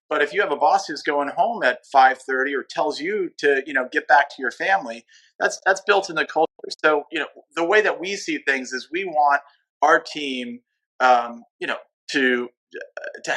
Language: English